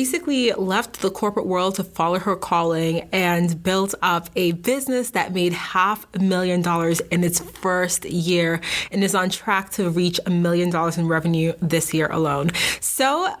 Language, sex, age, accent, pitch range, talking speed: English, female, 30-49, American, 180-230 Hz, 180 wpm